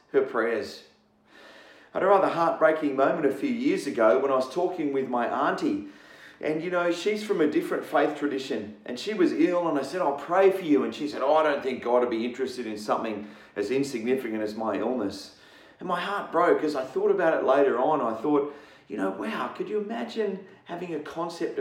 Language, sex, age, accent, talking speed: English, male, 40-59, Australian, 215 wpm